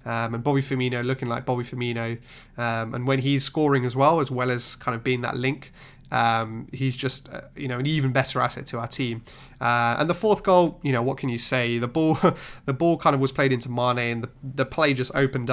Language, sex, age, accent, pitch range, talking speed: English, male, 20-39, British, 120-140 Hz, 245 wpm